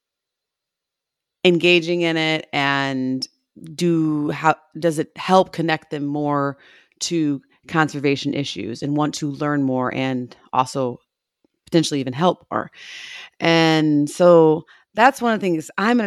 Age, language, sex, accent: 30-49, English, female, American